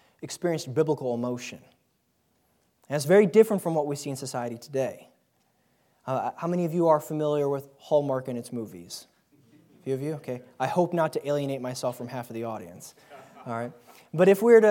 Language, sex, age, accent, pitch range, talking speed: English, male, 20-39, American, 130-165 Hz, 195 wpm